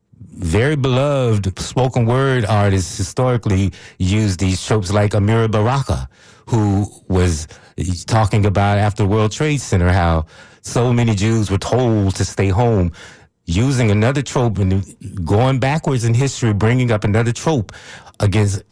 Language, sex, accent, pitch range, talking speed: English, male, American, 95-120 Hz, 135 wpm